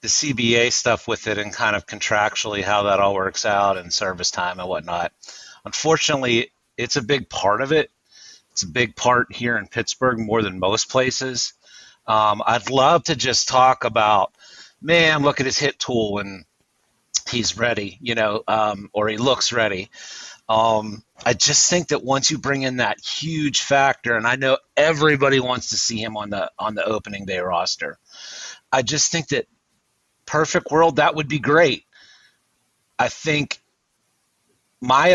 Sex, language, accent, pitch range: male, English, American, 115-145 Hz